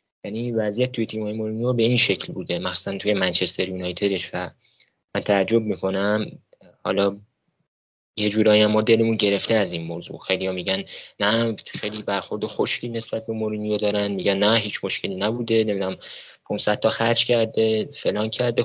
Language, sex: Persian, male